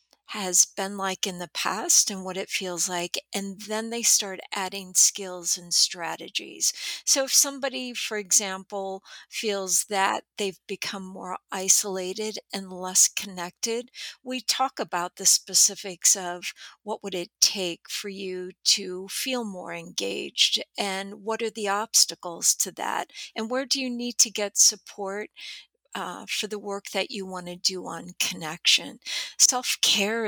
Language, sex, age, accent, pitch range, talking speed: English, female, 50-69, American, 185-215 Hz, 155 wpm